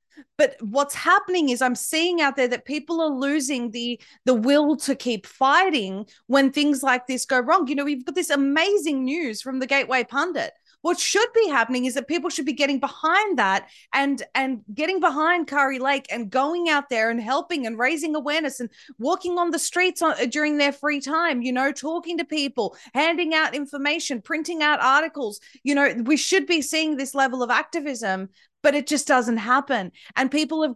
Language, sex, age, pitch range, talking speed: English, female, 20-39, 235-295 Hz, 195 wpm